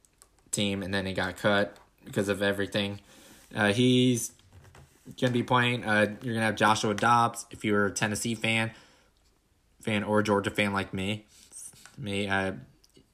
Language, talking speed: English, 145 wpm